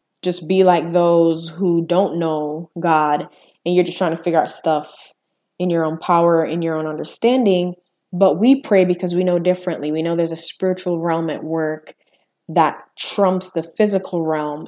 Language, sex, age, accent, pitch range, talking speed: English, female, 20-39, American, 155-180 Hz, 180 wpm